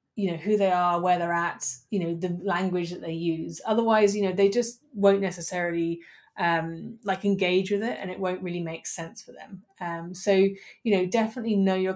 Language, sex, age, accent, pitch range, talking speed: English, female, 30-49, British, 170-200 Hz, 210 wpm